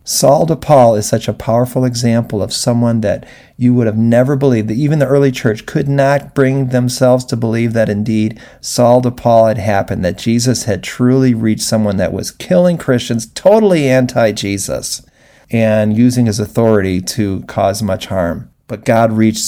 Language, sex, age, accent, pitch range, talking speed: English, male, 50-69, American, 110-135 Hz, 175 wpm